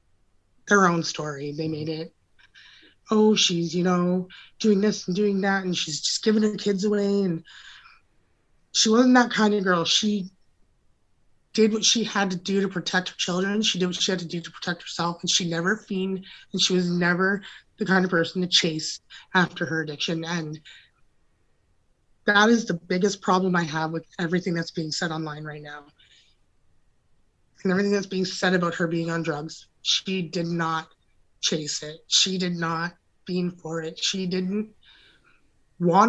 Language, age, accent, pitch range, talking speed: English, 20-39, American, 165-195 Hz, 180 wpm